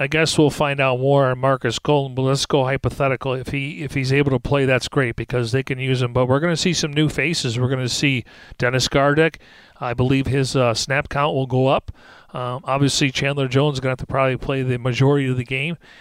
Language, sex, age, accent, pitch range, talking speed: English, male, 40-59, American, 125-145 Hz, 245 wpm